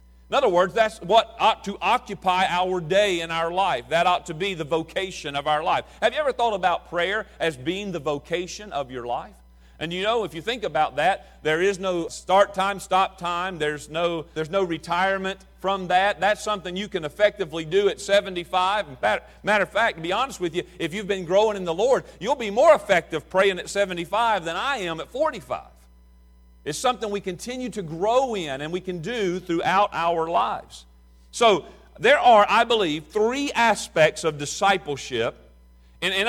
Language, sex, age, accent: English, male, 40-59, American